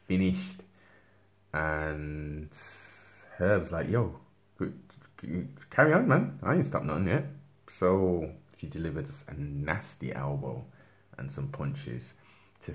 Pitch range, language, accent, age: 75-100 Hz, English, British, 30-49